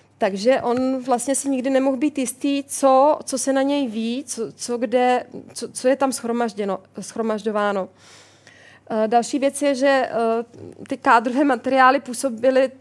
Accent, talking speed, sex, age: native, 150 wpm, female, 20-39